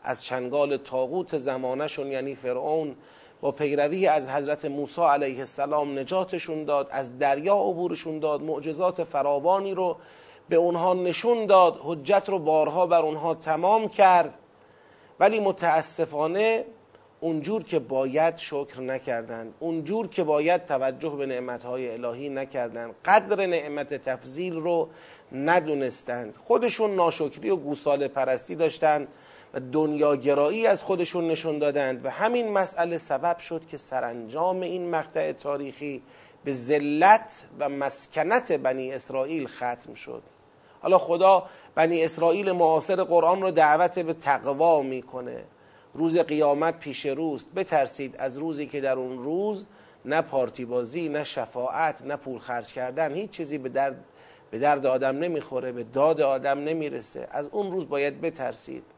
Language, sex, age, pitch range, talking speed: Persian, male, 30-49, 135-175 Hz, 130 wpm